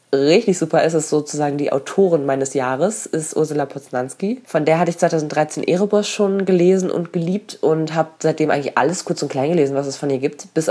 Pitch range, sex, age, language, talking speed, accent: 150-190 Hz, female, 20-39, German, 205 wpm, German